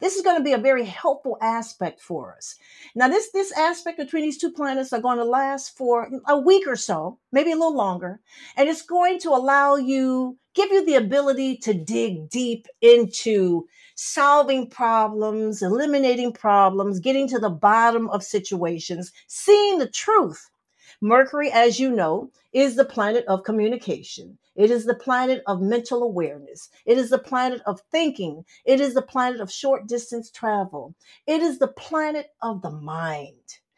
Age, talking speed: 50-69, 170 wpm